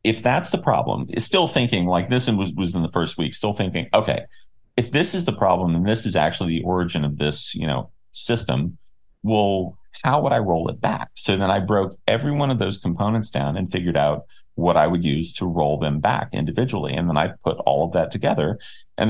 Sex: male